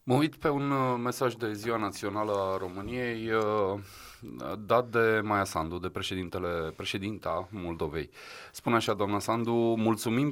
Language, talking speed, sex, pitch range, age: Romanian, 135 wpm, male, 100-120 Hz, 30-49